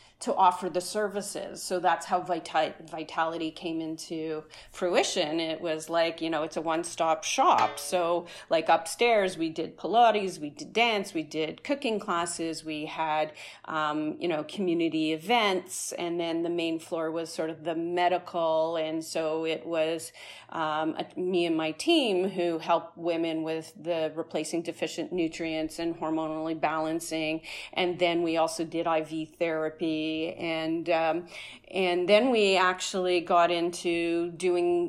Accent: American